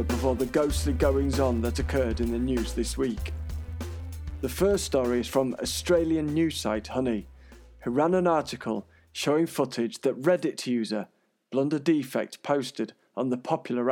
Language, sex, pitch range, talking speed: English, male, 120-155 Hz, 150 wpm